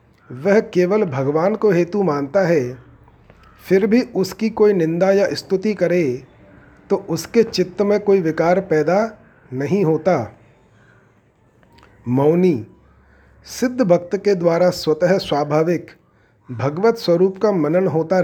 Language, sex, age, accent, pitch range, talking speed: Hindi, male, 40-59, native, 140-195 Hz, 120 wpm